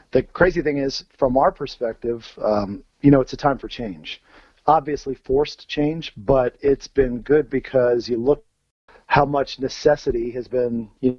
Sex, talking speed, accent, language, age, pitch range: male, 165 wpm, American, English, 40-59, 120-145 Hz